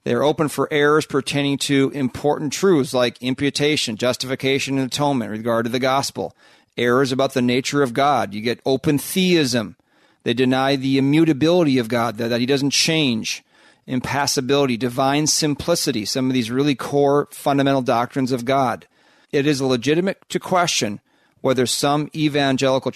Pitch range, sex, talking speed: 125-150 Hz, male, 150 wpm